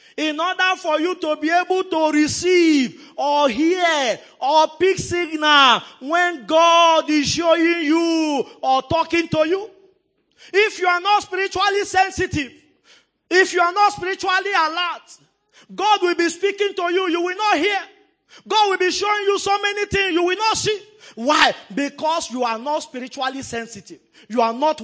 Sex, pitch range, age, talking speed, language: male, 265-370 Hz, 30-49, 160 wpm, English